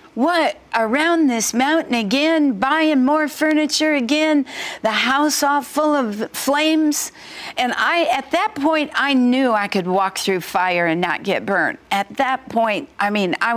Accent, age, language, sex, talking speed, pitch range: American, 60-79, English, female, 165 wpm, 230-285 Hz